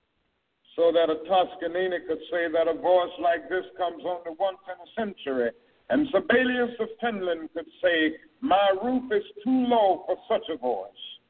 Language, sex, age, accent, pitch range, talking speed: English, male, 60-79, American, 180-250 Hz, 170 wpm